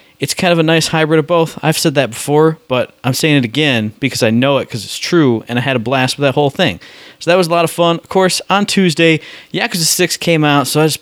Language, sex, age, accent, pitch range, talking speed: English, male, 20-39, American, 130-165 Hz, 280 wpm